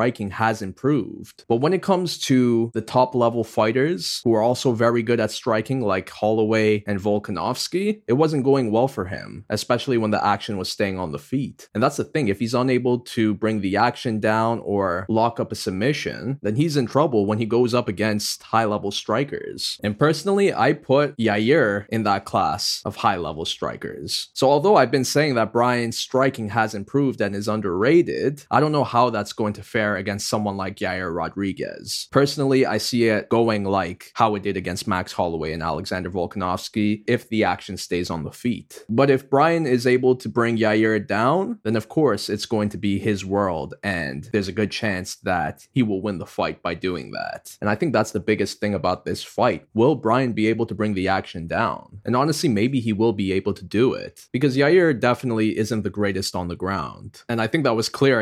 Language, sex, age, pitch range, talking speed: English, male, 20-39, 100-125 Hz, 210 wpm